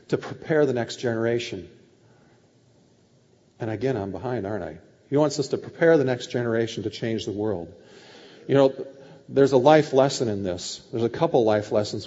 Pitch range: 110-155 Hz